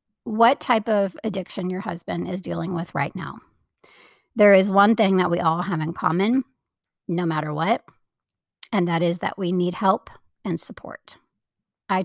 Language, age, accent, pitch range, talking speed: English, 40-59, American, 180-215 Hz, 170 wpm